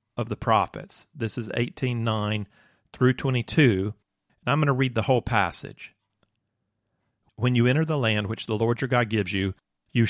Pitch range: 105-125 Hz